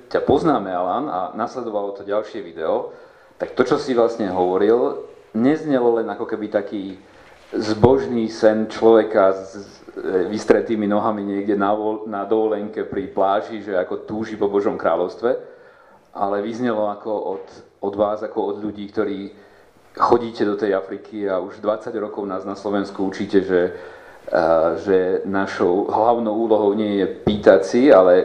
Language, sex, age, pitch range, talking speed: Slovak, male, 40-59, 100-115 Hz, 145 wpm